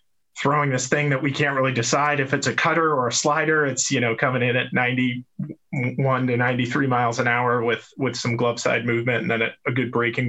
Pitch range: 115-140 Hz